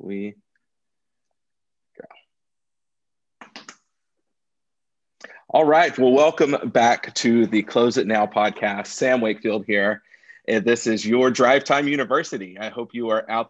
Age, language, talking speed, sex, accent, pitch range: 40-59, English, 120 wpm, male, American, 105-125 Hz